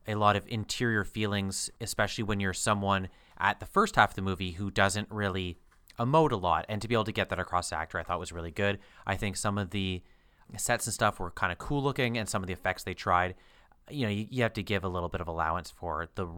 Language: English